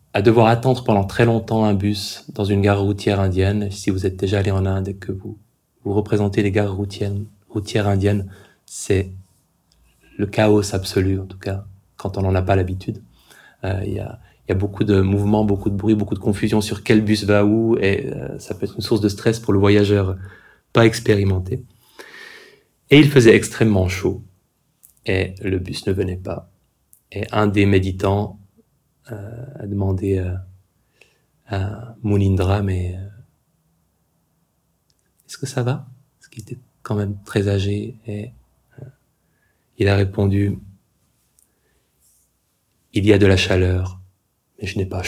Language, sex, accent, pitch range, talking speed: French, male, French, 95-110 Hz, 165 wpm